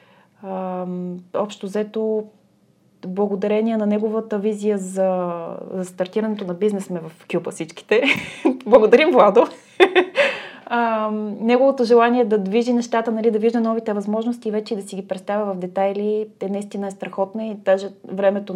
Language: Bulgarian